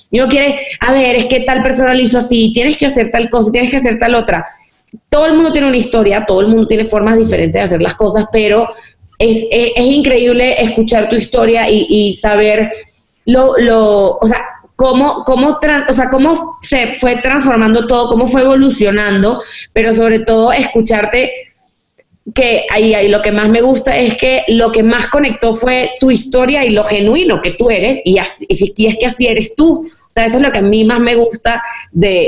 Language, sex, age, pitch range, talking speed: Spanish, female, 20-39, 215-255 Hz, 205 wpm